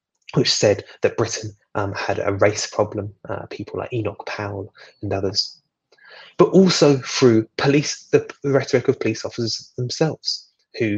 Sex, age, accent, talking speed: male, 20-39, British, 150 wpm